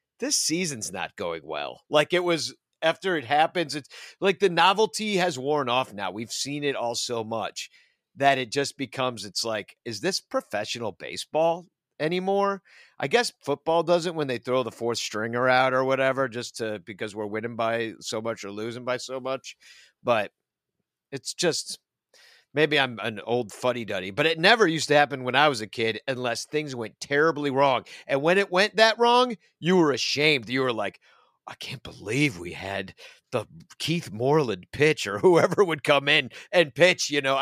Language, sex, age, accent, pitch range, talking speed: English, male, 50-69, American, 120-175 Hz, 190 wpm